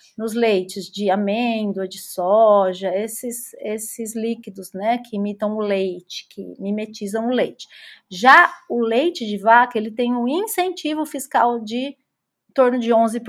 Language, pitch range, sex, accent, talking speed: Portuguese, 210-250 Hz, female, Brazilian, 145 wpm